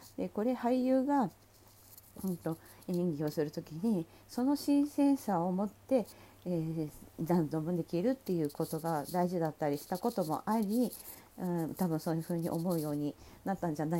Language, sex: Japanese, female